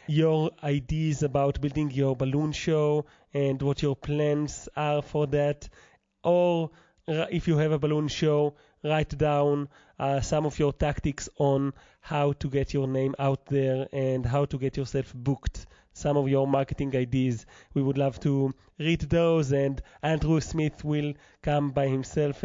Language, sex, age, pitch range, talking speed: English, male, 30-49, 135-155 Hz, 160 wpm